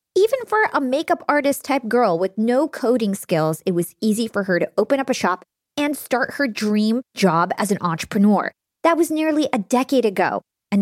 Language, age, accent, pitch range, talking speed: English, 20-39, American, 190-265 Hz, 200 wpm